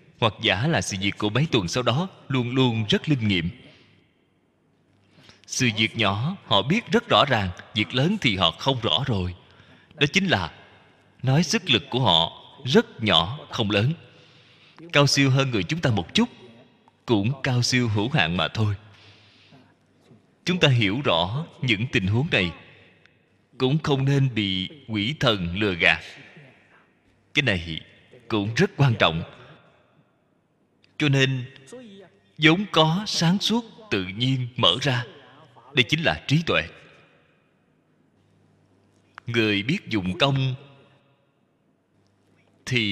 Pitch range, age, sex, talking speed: 100-150 Hz, 20-39, male, 140 wpm